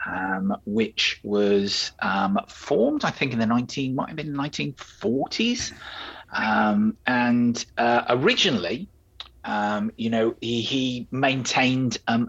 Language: English